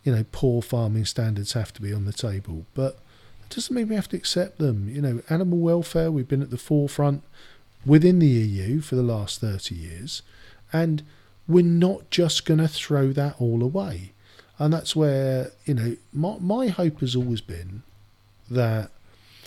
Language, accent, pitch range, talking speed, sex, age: English, British, 105-140 Hz, 180 wpm, male, 40-59